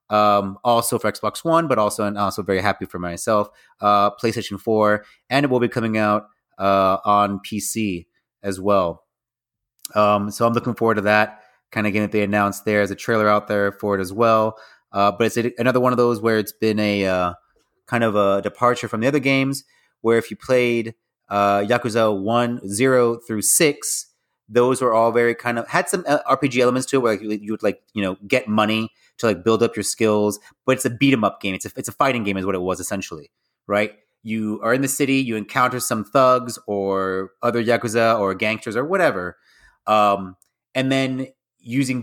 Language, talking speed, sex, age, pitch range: English, 210 wpm, male, 30-49, 100-120 Hz